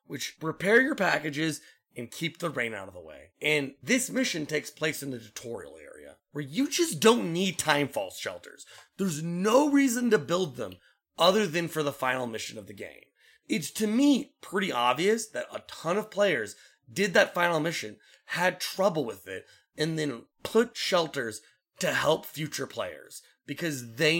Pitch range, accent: 140-210 Hz, American